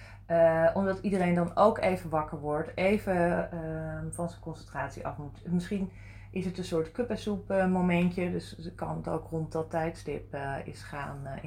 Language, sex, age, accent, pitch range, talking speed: Dutch, female, 30-49, Dutch, 130-175 Hz, 185 wpm